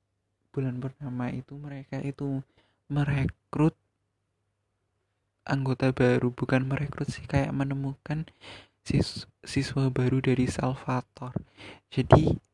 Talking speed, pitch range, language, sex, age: 90 wpm, 105-135 Hz, Indonesian, male, 20-39